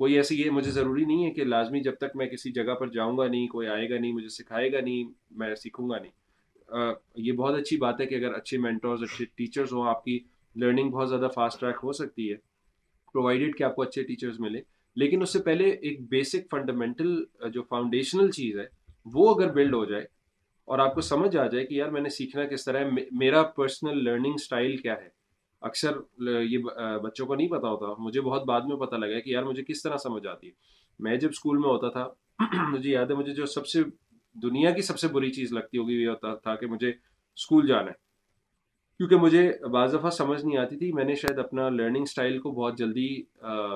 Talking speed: 225 wpm